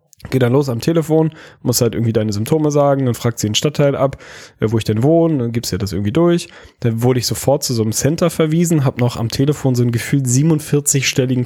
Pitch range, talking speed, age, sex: 115-135 Hz, 230 wpm, 10-29, male